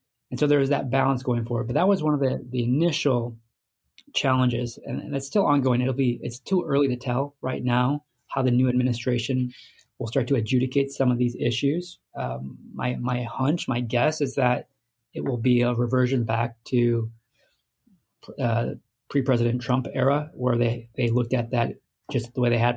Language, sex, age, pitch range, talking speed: English, male, 20-39, 120-135 Hz, 185 wpm